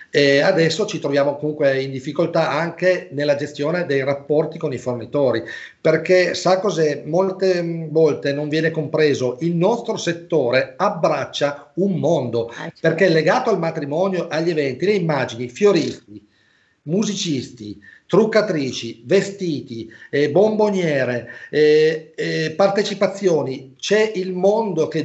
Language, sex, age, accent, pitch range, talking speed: Italian, male, 40-59, native, 140-185 Hz, 120 wpm